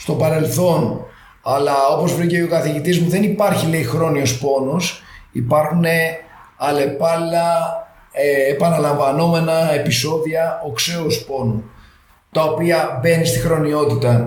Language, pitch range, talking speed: Greek, 135-180 Hz, 105 wpm